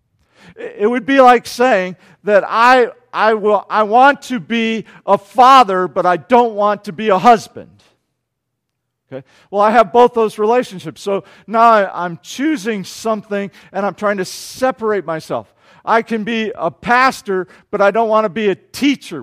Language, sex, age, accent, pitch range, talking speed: English, male, 50-69, American, 180-230 Hz, 170 wpm